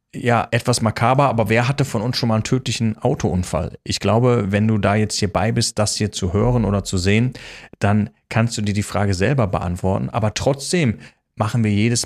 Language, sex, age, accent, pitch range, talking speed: German, male, 30-49, German, 100-130 Hz, 210 wpm